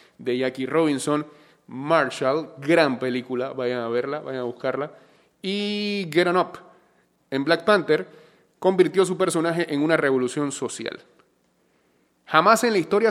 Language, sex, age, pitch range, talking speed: Spanish, male, 30-49, 140-195 Hz, 135 wpm